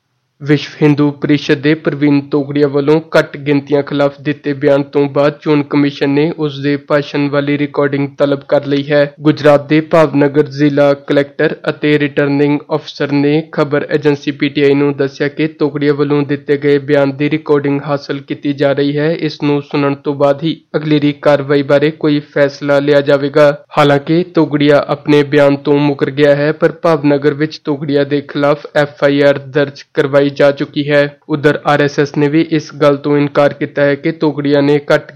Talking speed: 105 wpm